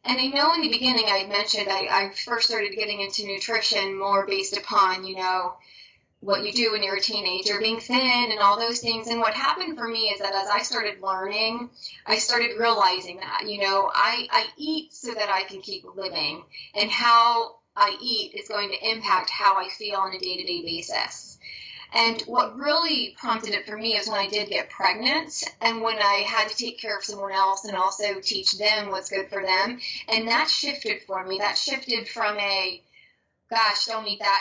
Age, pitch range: 20-39, 195-235 Hz